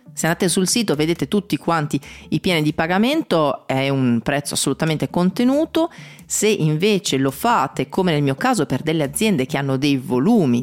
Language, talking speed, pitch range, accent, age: Italian, 175 wpm, 130-180 Hz, native, 30-49